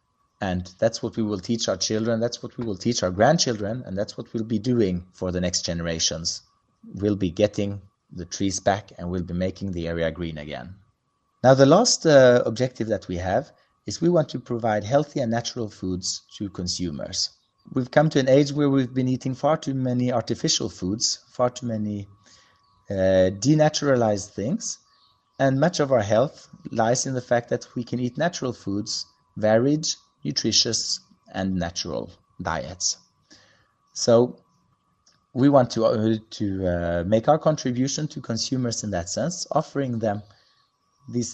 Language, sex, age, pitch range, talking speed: English, male, 30-49, 100-135 Hz, 170 wpm